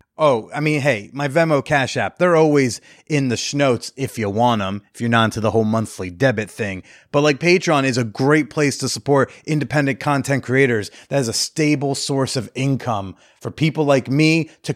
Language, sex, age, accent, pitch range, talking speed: English, male, 30-49, American, 120-150 Hz, 205 wpm